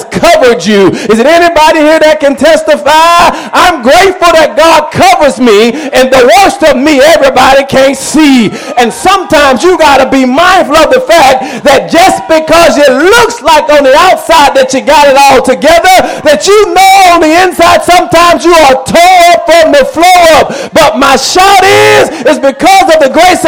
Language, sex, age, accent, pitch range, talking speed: English, male, 40-59, American, 260-330 Hz, 180 wpm